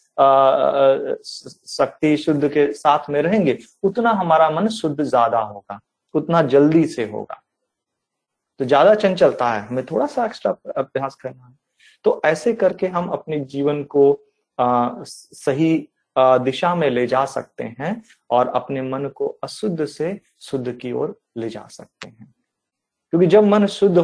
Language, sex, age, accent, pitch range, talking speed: Hindi, male, 30-49, native, 130-165 Hz, 145 wpm